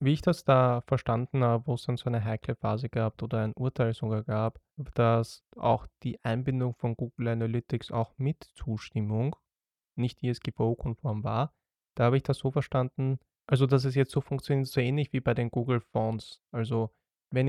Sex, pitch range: male, 115-140 Hz